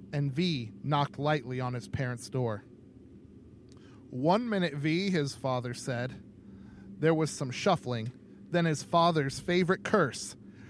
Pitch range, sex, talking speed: 115-155 Hz, male, 130 wpm